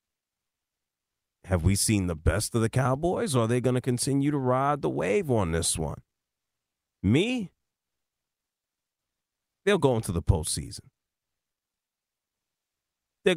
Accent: American